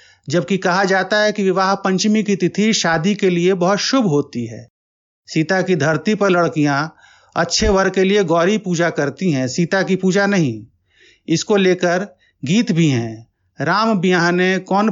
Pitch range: 150-200 Hz